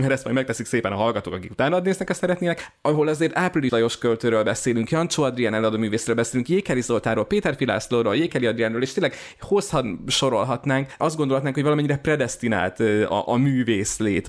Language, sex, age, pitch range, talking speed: Hungarian, male, 20-39, 110-145 Hz, 165 wpm